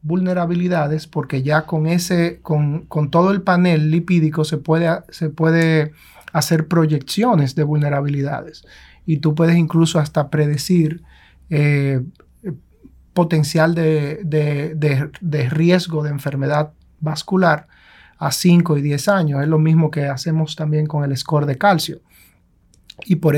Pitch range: 150-170 Hz